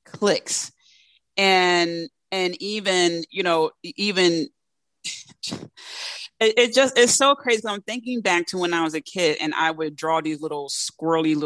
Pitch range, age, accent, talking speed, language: 155-200 Hz, 30-49, American, 150 wpm, English